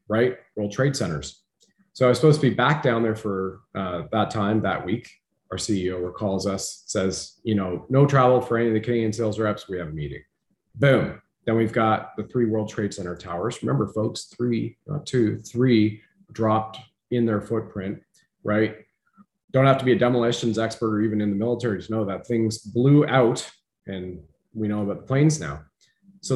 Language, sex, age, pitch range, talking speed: English, male, 30-49, 100-125 Hz, 195 wpm